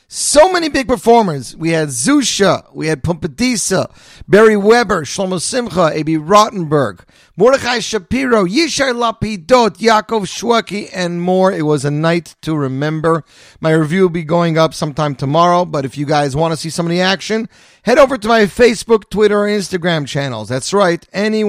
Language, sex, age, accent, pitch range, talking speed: English, male, 40-59, American, 130-185 Hz, 170 wpm